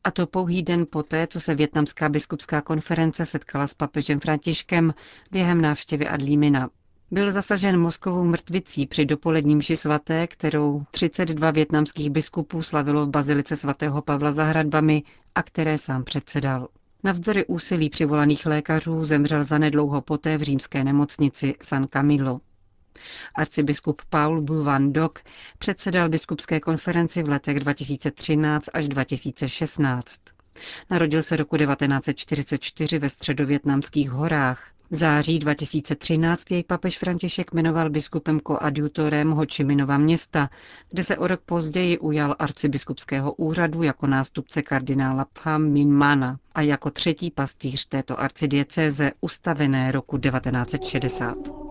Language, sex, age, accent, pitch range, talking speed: Czech, female, 40-59, native, 145-160 Hz, 120 wpm